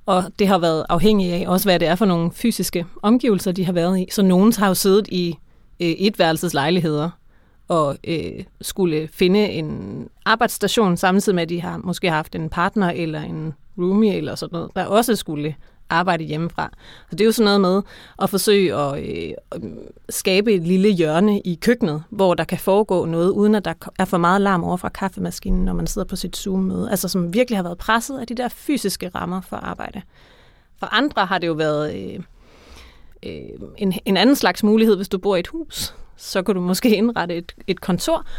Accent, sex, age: native, female, 30-49